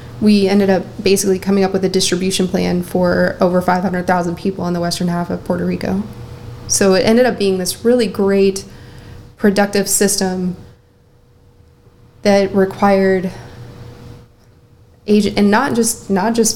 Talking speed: 140 wpm